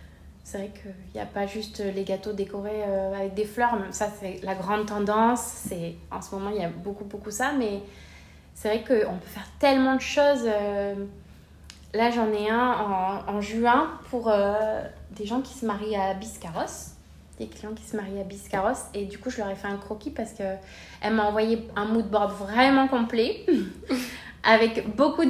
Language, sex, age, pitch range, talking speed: French, female, 20-39, 195-235 Hz, 195 wpm